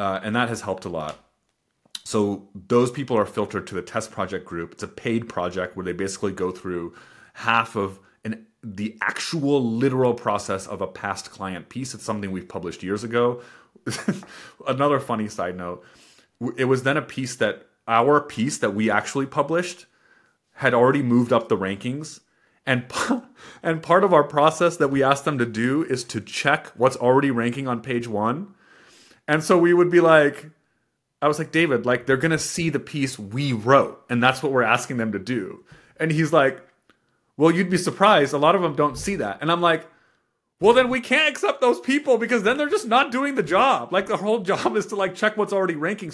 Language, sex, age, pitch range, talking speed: English, male, 30-49, 110-170 Hz, 205 wpm